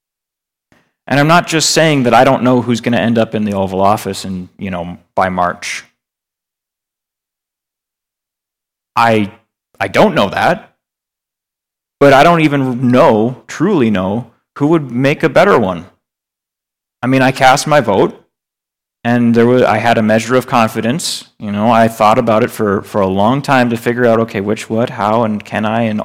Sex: male